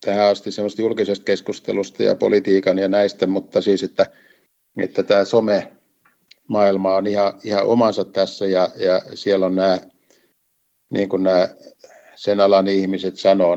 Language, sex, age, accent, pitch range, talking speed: Finnish, male, 60-79, native, 90-100 Hz, 135 wpm